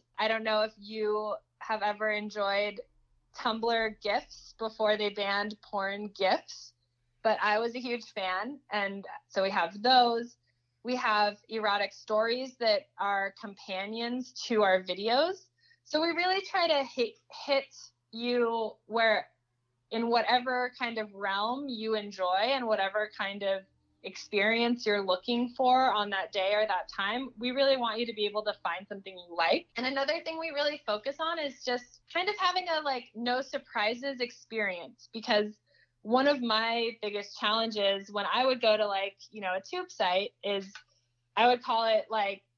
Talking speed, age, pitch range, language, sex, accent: 165 wpm, 20-39, 200-245 Hz, English, female, American